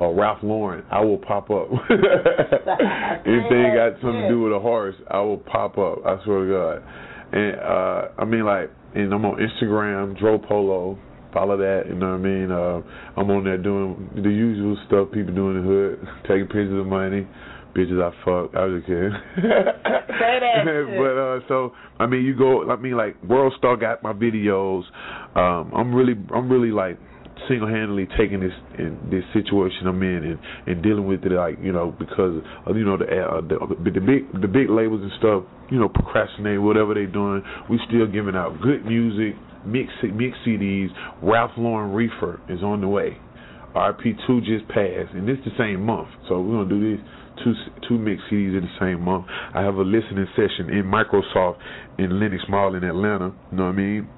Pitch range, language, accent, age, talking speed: 95-115 Hz, English, American, 20-39, 200 wpm